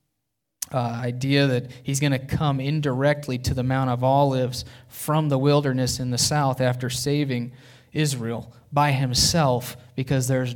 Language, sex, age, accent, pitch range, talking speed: English, male, 30-49, American, 120-140 Hz, 150 wpm